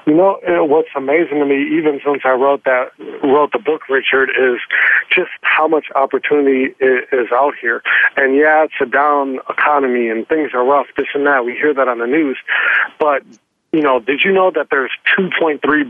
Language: English